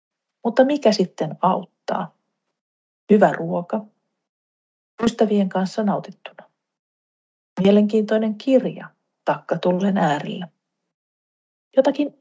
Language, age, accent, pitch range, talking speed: Finnish, 40-59, native, 180-240 Hz, 70 wpm